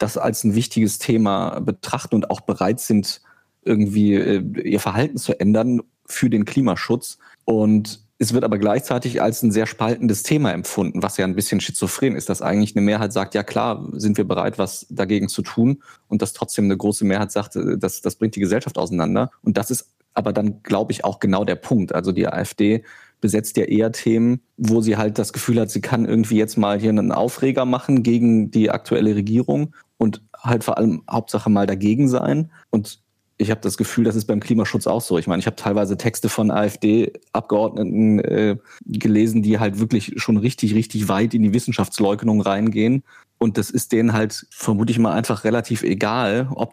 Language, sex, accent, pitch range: German, male, German, 105-115 Hz